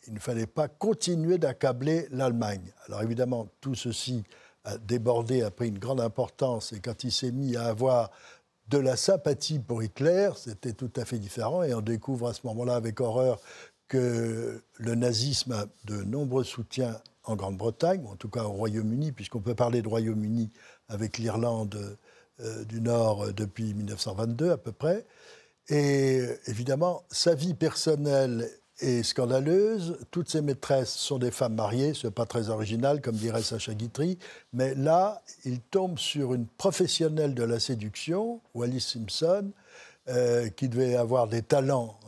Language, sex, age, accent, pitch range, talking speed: French, male, 60-79, French, 115-145 Hz, 160 wpm